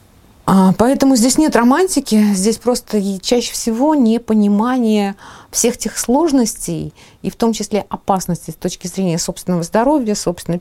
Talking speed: 130 wpm